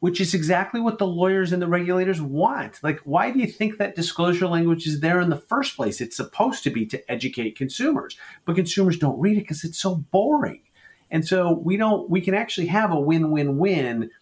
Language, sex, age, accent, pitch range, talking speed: English, male, 40-59, American, 125-180 Hz, 210 wpm